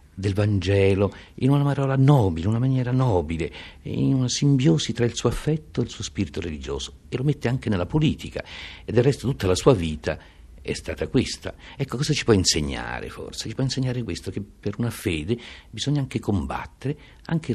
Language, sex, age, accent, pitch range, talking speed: Italian, male, 60-79, native, 80-120 Hz, 190 wpm